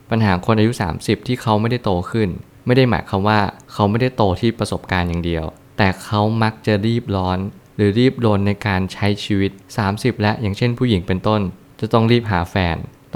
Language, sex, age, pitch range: Thai, male, 20-39, 95-115 Hz